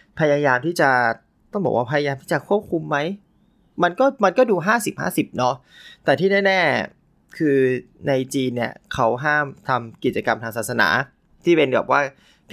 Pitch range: 125-155 Hz